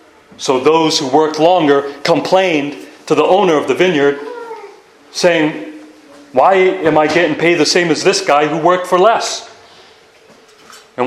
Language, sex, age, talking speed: English, male, 30-49, 150 wpm